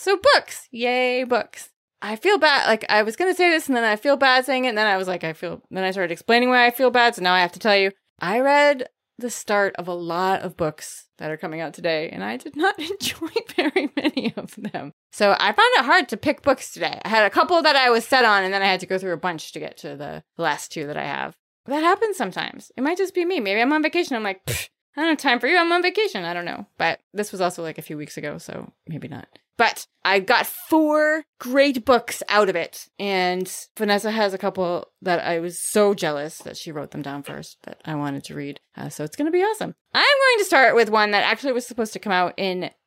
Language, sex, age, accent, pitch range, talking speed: English, female, 20-39, American, 180-280 Hz, 270 wpm